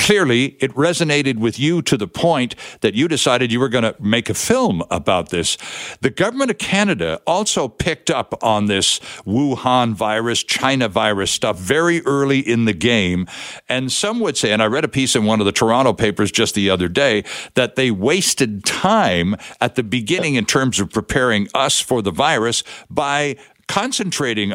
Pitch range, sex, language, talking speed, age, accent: 110-150 Hz, male, English, 185 wpm, 60-79, American